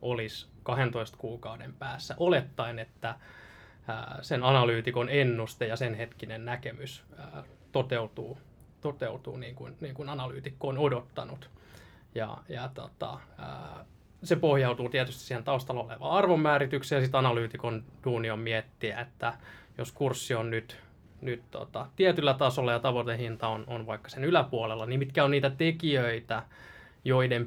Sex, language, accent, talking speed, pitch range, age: male, Finnish, native, 130 wpm, 115-135 Hz, 20-39